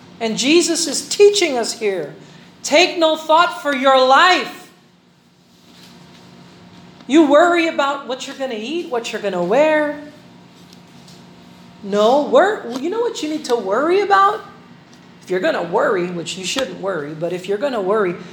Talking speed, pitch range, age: 160 wpm, 220-320 Hz, 40-59